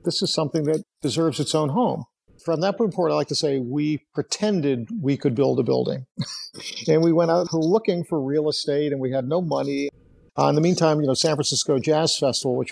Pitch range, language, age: 130-160 Hz, English, 50-69